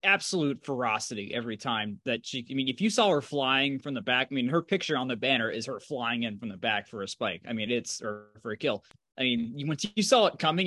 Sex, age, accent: male, 20-39, American